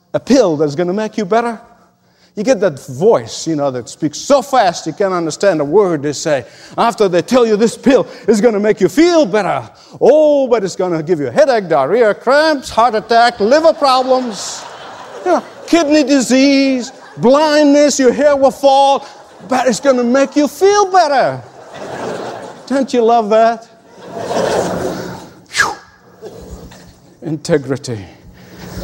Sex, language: male, English